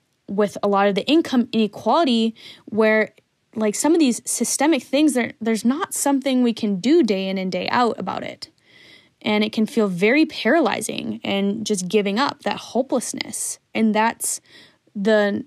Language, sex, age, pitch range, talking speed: English, female, 10-29, 200-245 Hz, 165 wpm